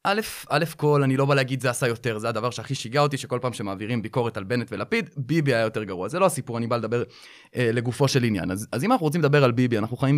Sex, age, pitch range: male, 20-39, 120-160 Hz